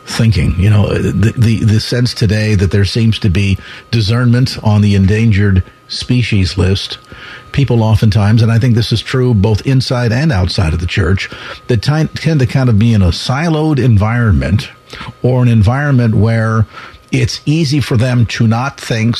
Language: English